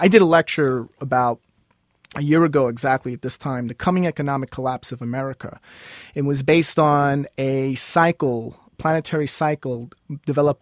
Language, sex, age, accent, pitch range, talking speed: English, male, 30-49, American, 135-165 Hz, 155 wpm